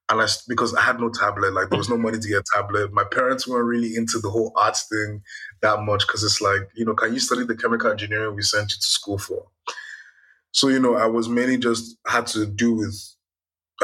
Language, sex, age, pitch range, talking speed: English, male, 20-39, 105-125 Hz, 235 wpm